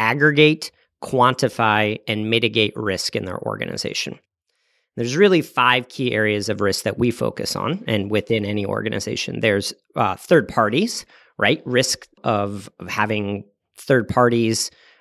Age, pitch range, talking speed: 40-59, 110-140 Hz, 130 wpm